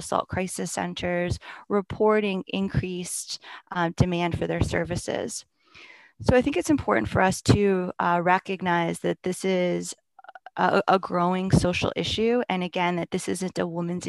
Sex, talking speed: female, 150 wpm